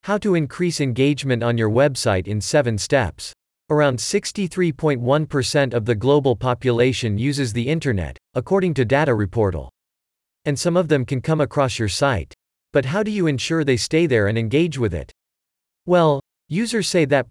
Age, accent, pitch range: 40-59, American, 105-155 Hz